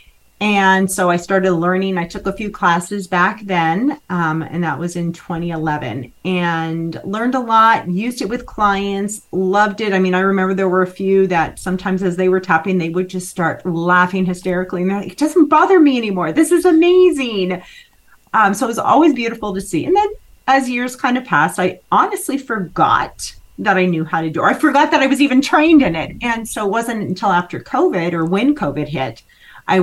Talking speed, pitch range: 210 wpm, 165-205 Hz